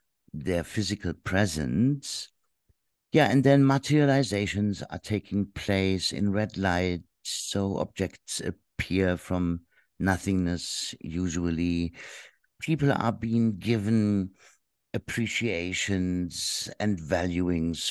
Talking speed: 85 wpm